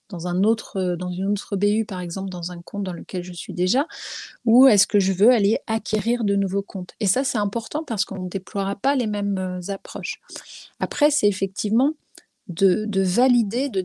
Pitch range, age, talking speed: 185-230 Hz, 30-49, 190 wpm